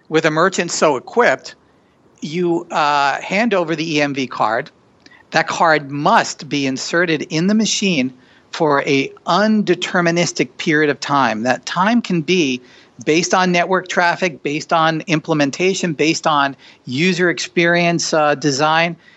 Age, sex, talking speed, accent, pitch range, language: 50-69, male, 135 wpm, American, 140-175 Hz, English